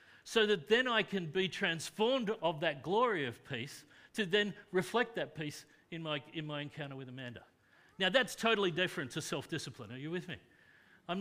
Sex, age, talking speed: male, 50-69, 185 wpm